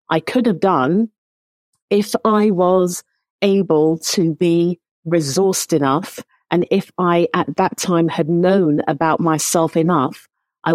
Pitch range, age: 160-195 Hz, 50-69